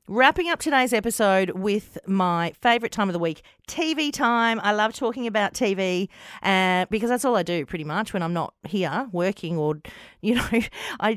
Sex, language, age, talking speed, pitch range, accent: female, English, 40-59, 190 wpm, 175-250 Hz, Australian